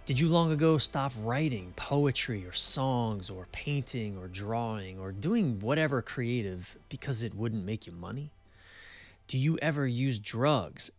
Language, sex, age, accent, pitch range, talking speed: English, male, 30-49, American, 95-130 Hz, 155 wpm